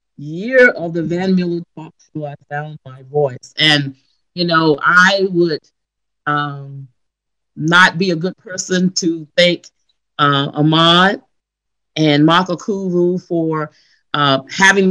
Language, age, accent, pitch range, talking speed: Russian, 40-59, American, 155-200 Hz, 130 wpm